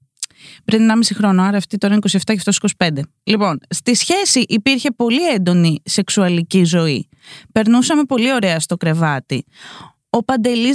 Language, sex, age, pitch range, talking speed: Greek, female, 20-39, 175-260 Hz, 145 wpm